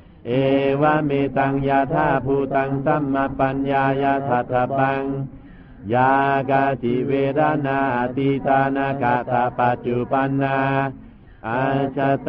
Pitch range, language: 135-140 Hz, Thai